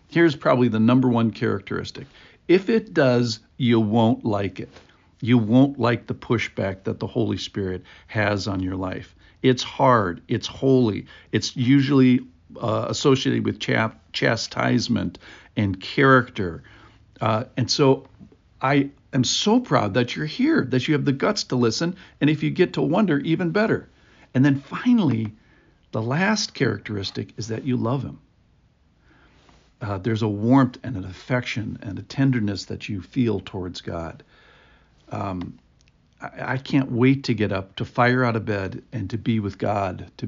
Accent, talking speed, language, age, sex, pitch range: American, 160 wpm, English, 60-79, male, 100-130 Hz